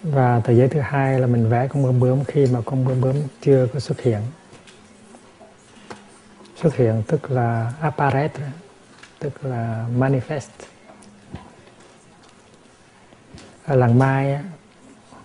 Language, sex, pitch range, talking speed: Vietnamese, male, 125-145 Hz, 120 wpm